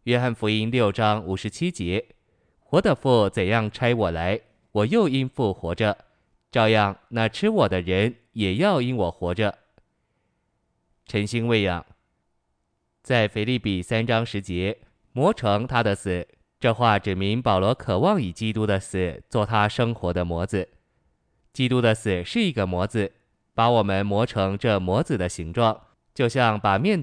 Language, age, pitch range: Chinese, 20-39, 95-120 Hz